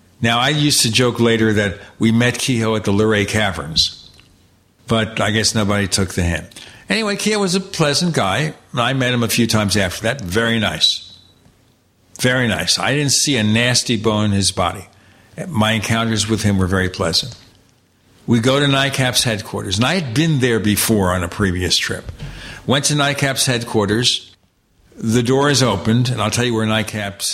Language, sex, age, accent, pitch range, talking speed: English, male, 60-79, American, 95-125 Hz, 180 wpm